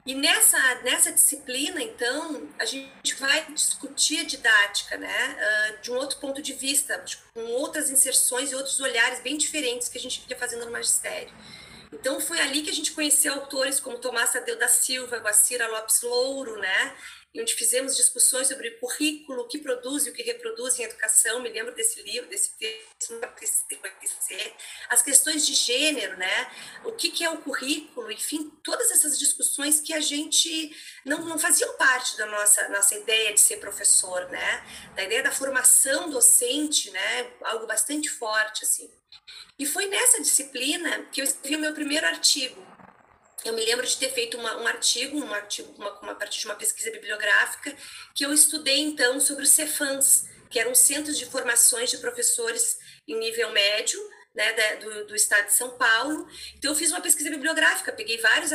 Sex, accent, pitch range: female, Brazilian, 250-330 Hz